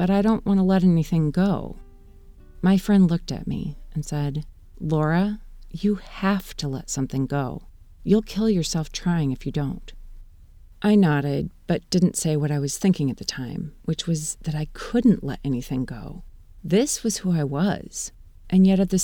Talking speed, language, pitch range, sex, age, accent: 185 wpm, English, 145-190 Hz, female, 40-59, American